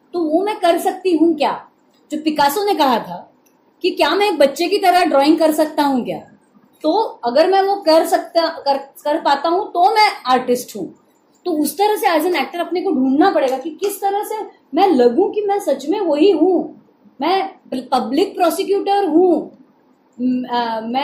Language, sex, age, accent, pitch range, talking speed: Marathi, female, 30-49, native, 245-340 Hz, 40 wpm